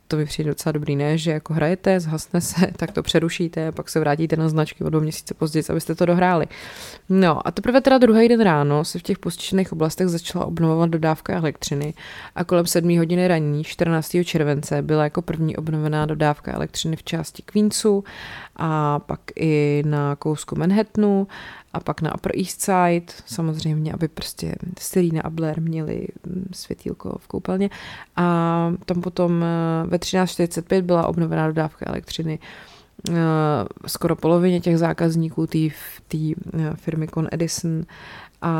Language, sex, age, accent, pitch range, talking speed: Czech, female, 20-39, native, 155-180 Hz, 155 wpm